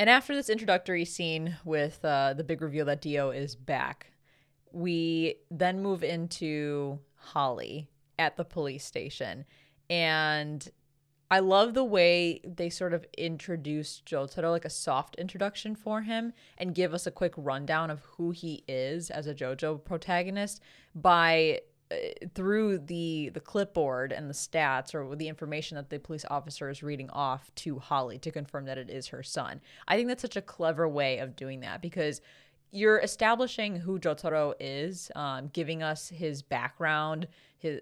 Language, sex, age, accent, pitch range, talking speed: English, female, 20-39, American, 145-180 Hz, 160 wpm